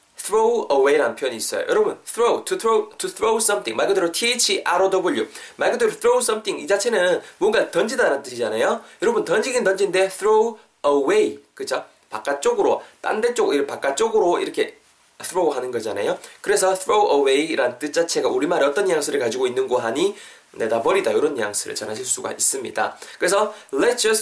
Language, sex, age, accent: Korean, male, 20-39, native